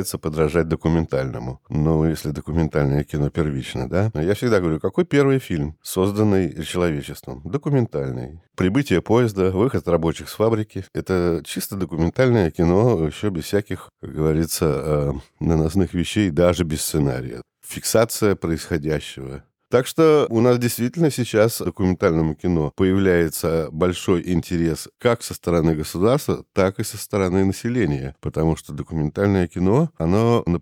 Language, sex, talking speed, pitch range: Russian, male, 130 wpm, 80-110 Hz